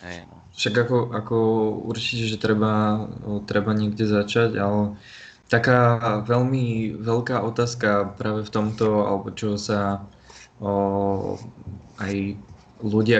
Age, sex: 20-39, male